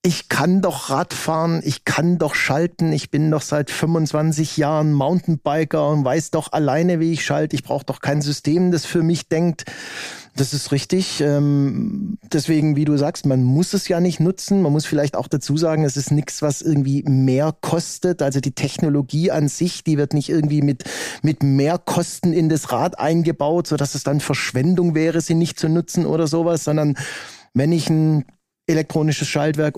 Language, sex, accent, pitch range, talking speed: German, male, German, 140-165 Hz, 185 wpm